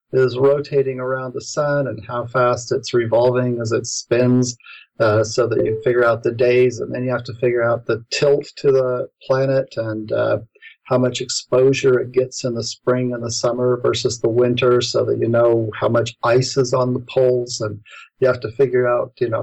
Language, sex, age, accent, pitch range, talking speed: English, male, 40-59, American, 115-135 Hz, 210 wpm